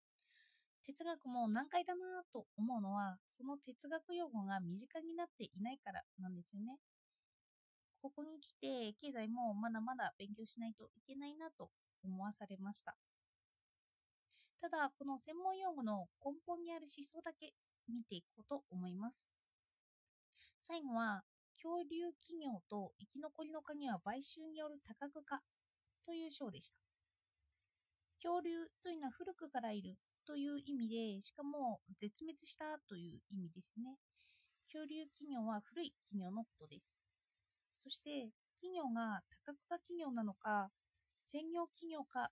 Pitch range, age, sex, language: 200-310 Hz, 20-39, female, Japanese